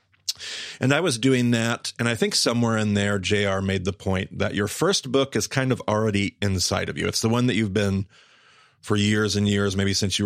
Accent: American